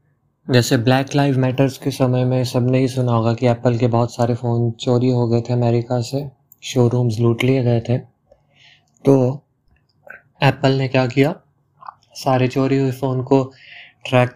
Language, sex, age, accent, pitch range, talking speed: Hindi, male, 20-39, native, 120-135 Hz, 165 wpm